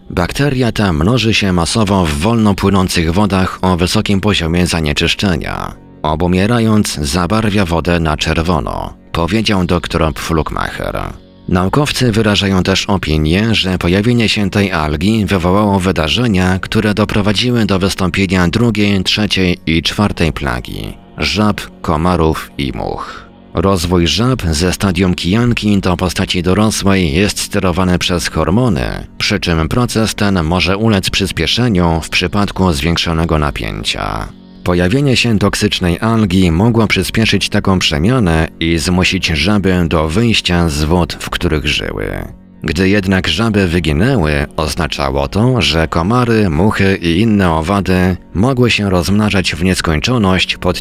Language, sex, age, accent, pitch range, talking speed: Polish, male, 40-59, native, 85-105 Hz, 125 wpm